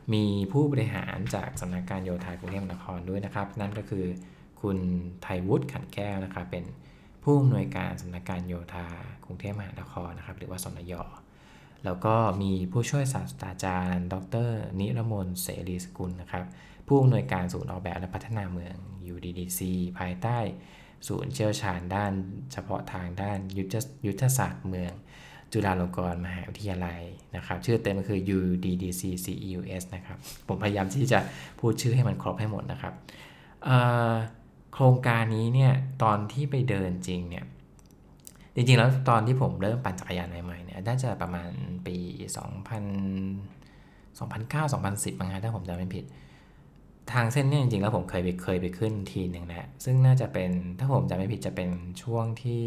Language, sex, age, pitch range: English, male, 20-39, 90-115 Hz